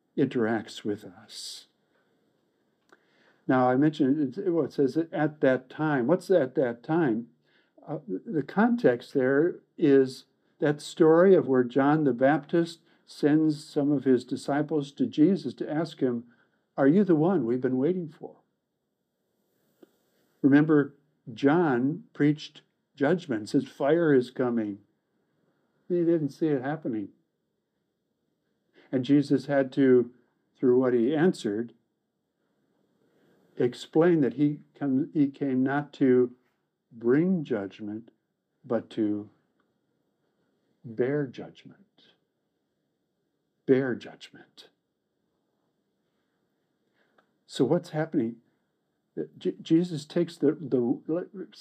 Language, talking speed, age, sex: English, 100 wpm, 60-79, male